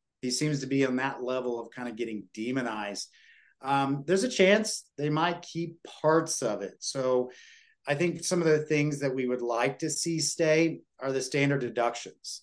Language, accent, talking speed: English, American, 195 wpm